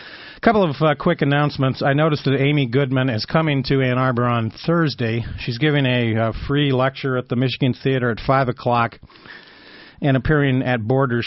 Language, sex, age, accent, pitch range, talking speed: English, male, 40-59, American, 115-135 Hz, 180 wpm